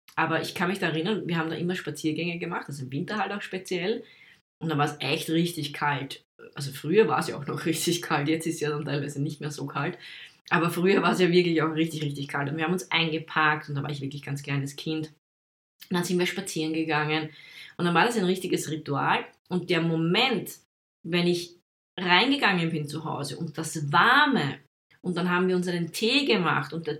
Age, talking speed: 20-39, 230 wpm